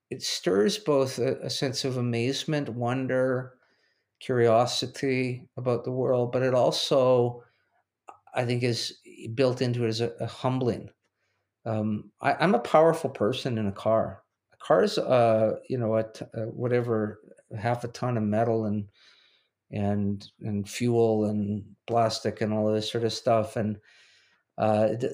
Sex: male